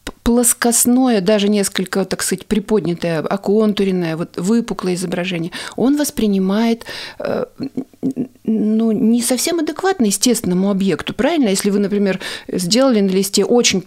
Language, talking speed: Russian, 110 wpm